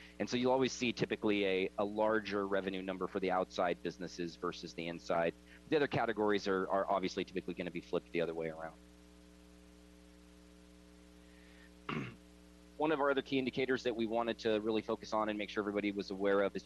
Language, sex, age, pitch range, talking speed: English, male, 30-49, 90-110 Hz, 190 wpm